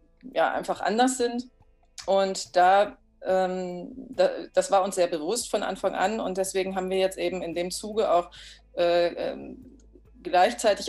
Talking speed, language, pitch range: 160 wpm, German, 175-200 Hz